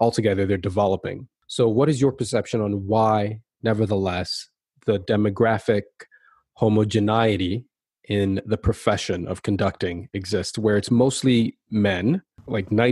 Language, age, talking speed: English, 20-39, 115 wpm